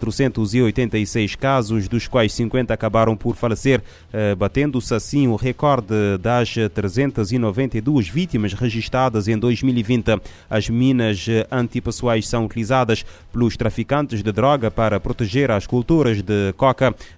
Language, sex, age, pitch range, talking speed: Portuguese, male, 30-49, 105-130 Hz, 115 wpm